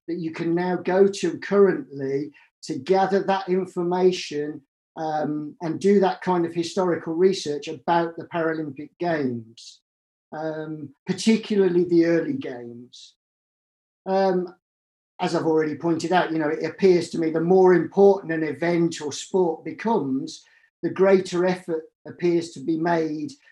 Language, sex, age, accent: English, male, 50-69, British